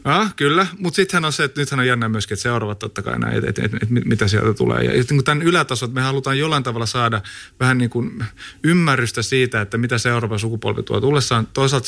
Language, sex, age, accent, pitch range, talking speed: Finnish, male, 30-49, native, 110-135 Hz, 180 wpm